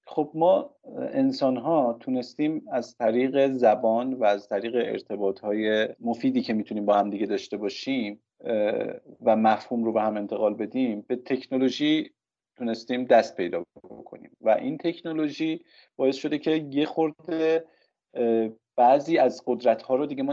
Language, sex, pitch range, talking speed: Persian, male, 110-135 Hz, 145 wpm